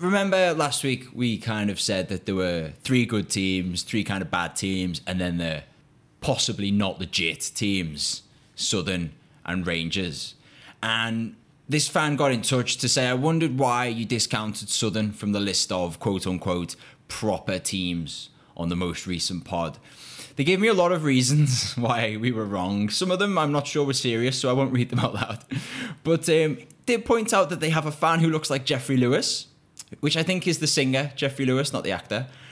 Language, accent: English, British